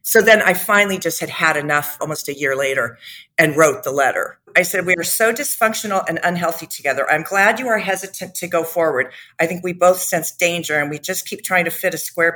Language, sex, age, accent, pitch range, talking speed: English, female, 50-69, American, 160-195 Hz, 235 wpm